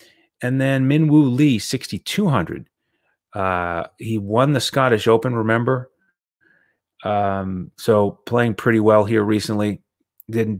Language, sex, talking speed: English, male, 115 wpm